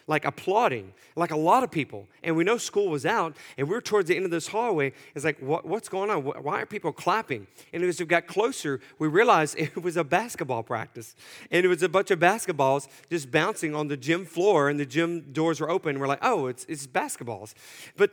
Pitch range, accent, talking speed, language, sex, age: 150-185 Hz, American, 235 wpm, English, male, 40-59